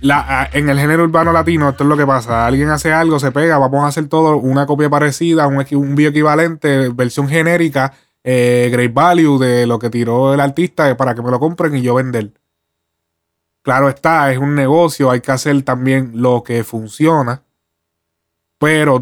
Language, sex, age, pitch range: Spanish, male, 20-39, 120-155 Hz